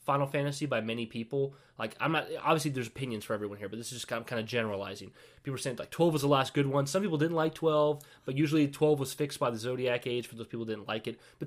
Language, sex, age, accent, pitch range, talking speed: English, male, 20-39, American, 115-145 Hz, 270 wpm